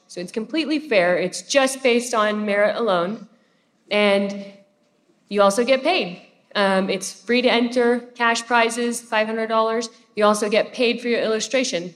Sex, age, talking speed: female, 40-59, 150 wpm